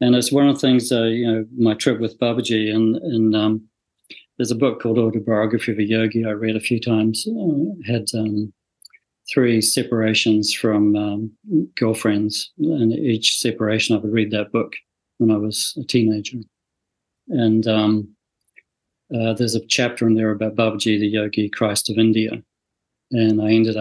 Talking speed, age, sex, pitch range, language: 170 wpm, 40-59, male, 110-120 Hz, English